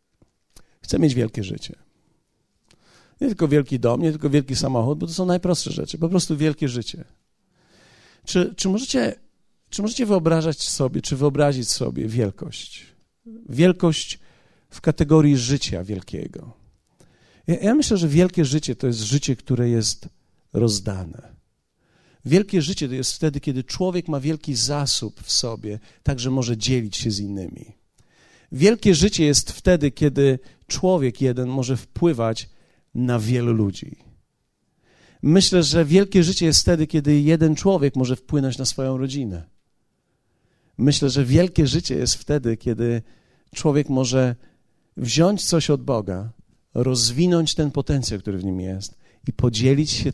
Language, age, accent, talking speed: Polish, 50-69, native, 140 wpm